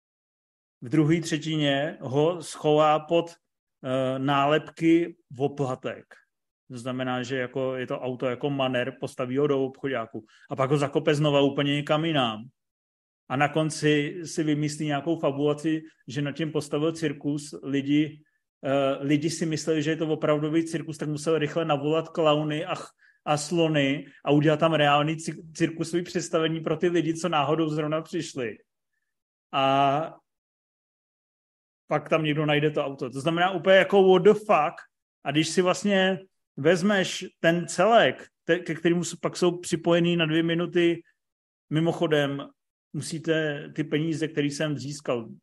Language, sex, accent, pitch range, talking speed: Czech, male, native, 140-165 Hz, 150 wpm